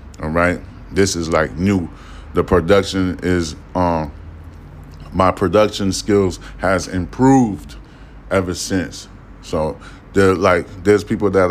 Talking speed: 115 wpm